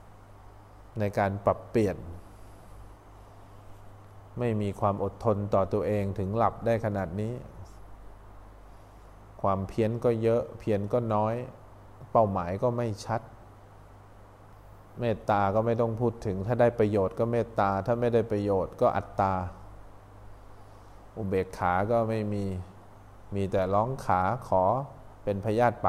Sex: male